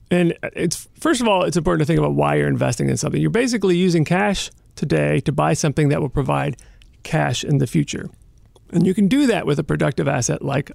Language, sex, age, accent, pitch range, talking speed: English, male, 40-59, American, 140-190 Hz, 225 wpm